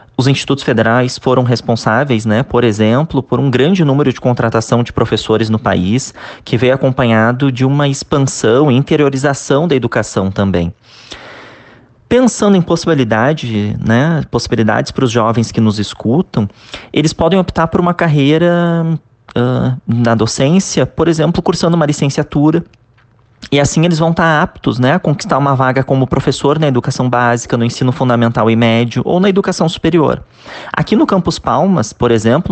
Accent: Brazilian